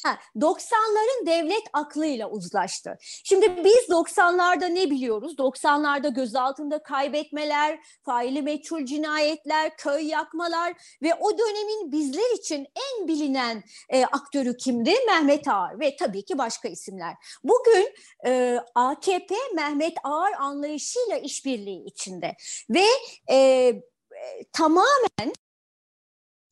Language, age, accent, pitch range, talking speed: Turkish, 40-59, native, 255-335 Hz, 95 wpm